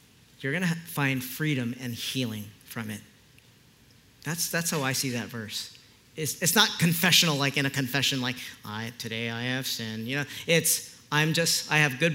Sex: male